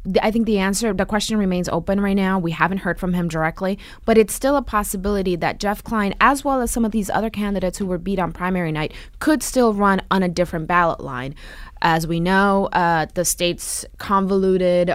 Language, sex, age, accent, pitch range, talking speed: English, female, 20-39, American, 160-195 Hz, 215 wpm